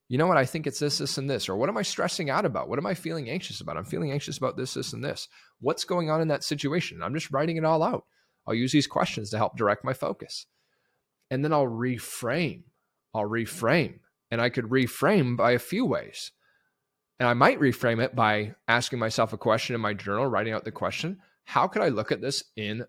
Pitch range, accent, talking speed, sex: 125-175 Hz, American, 235 wpm, male